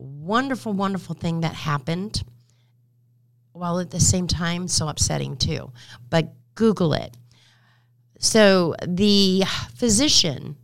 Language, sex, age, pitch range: English, female, 40-59, 120-155 Hz